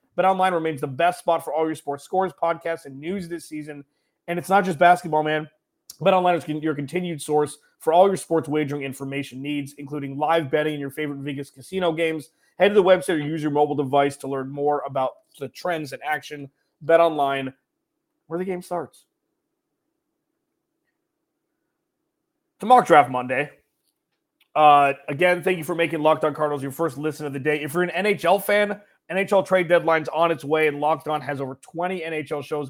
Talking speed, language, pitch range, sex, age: 190 wpm, English, 145-180 Hz, male, 30-49